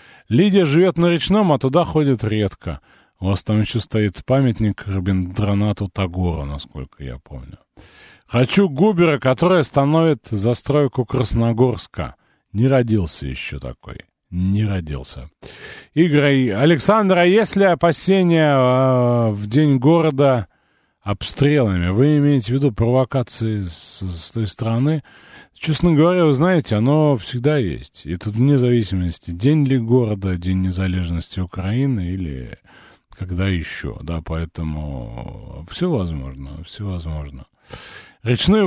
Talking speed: 120 wpm